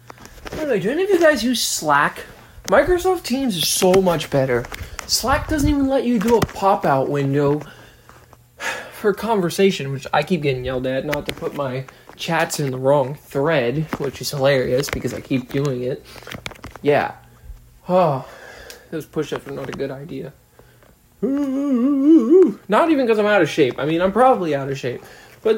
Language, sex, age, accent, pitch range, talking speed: English, male, 20-39, American, 140-230 Hz, 165 wpm